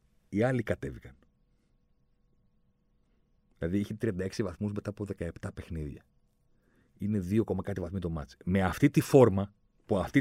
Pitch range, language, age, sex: 90-125 Hz, Greek, 40-59, male